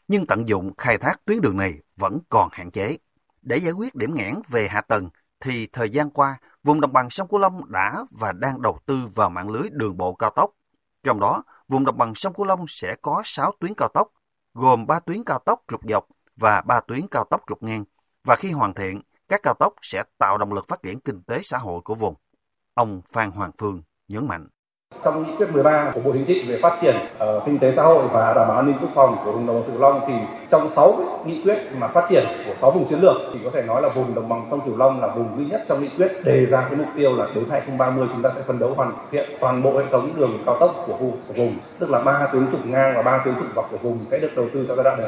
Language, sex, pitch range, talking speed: Vietnamese, male, 115-150 Hz, 270 wpm